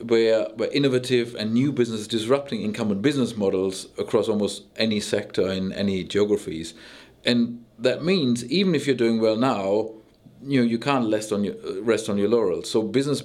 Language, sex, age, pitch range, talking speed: English, male, 50-69, 105-125 Hz, 175 wpm